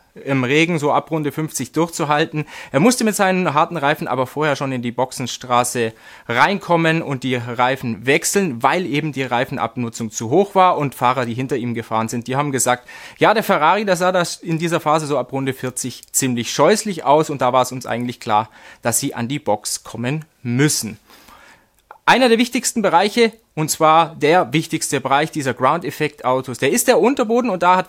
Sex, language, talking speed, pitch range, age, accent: male, German, 195 wpm, 125-165 Hz, 30-49, German